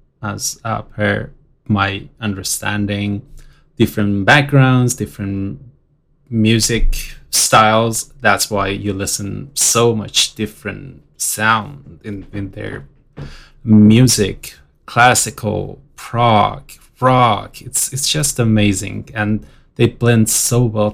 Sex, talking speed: male, 95 wpm